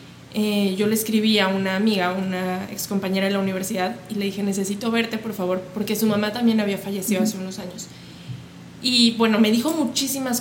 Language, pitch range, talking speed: Spanish, 200-240 Hz, 195 wpm